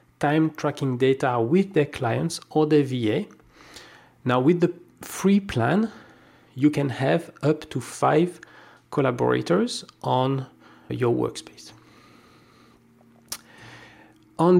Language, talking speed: English, 105 wpm